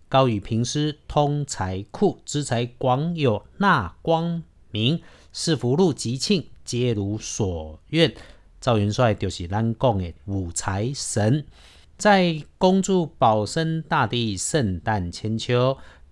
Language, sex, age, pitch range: Chinese, male, 50-69, 105-150 Hz